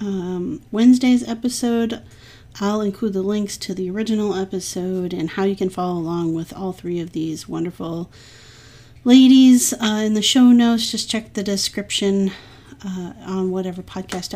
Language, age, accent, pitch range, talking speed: English, 30-49, American, 185-225 Hz, 155 wpm